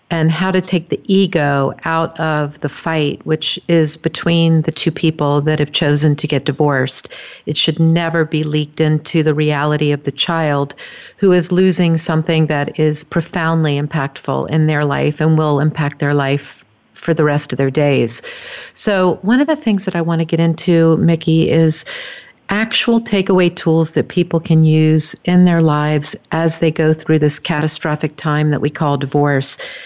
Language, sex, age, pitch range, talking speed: English, female, 50-69, 150-170 Hz, 180 wpm